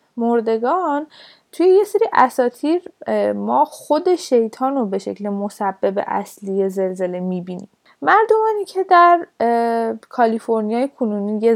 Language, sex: Persian, female